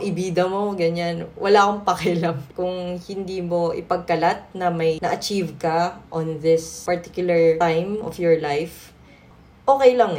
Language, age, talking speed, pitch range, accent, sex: English, 20-39, 135 wpm, 170-235 Hz, Filipino, female